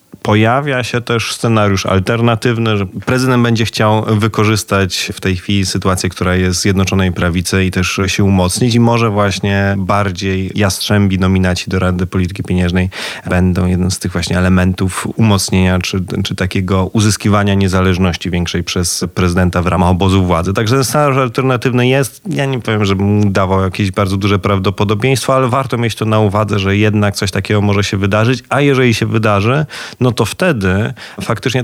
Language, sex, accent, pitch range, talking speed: Polish, male, native, 95-110 Hz, 165 wpm